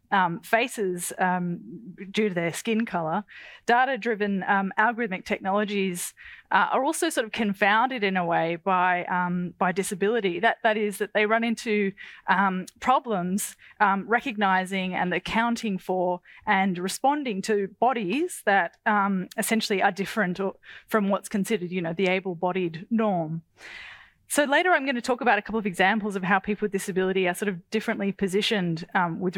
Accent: Australian